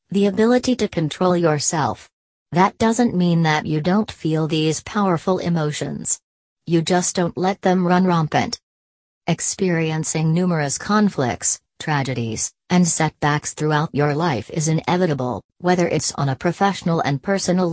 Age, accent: 40-59, American